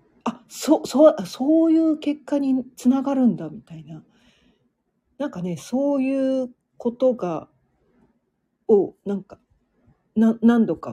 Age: 40-59